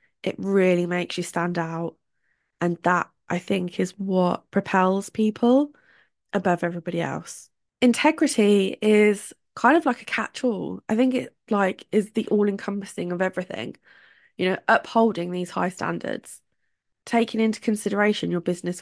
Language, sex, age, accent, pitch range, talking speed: English, female, 20-39, British, 185-220 Hz, 140 wpm